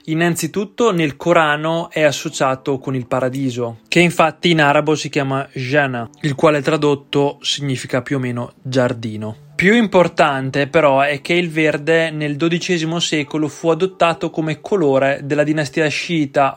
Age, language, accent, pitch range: 20-39, Italian, native, 140-165 Hz